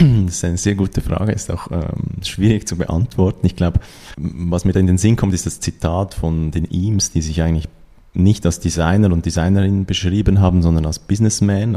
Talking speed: 205 wpm